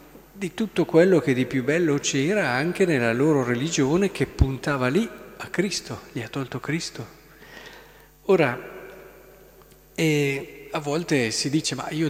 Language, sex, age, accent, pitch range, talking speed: Italian, male, 50-69, native, 130-175 Hz, 145 wpm